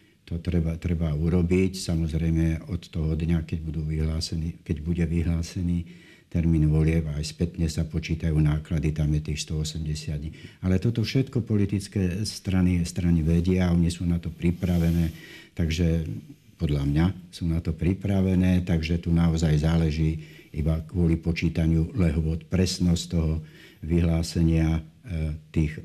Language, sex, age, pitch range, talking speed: Slovak, male, 60-79, 80-85 Hz, 135 wpm